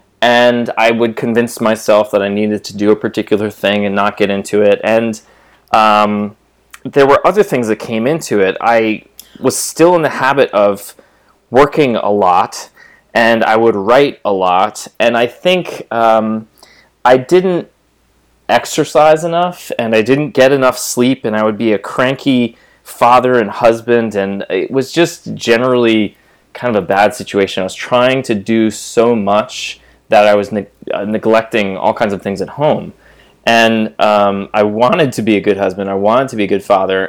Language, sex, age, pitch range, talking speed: English, male, 20-39, 105-125 Hz, 180 wpm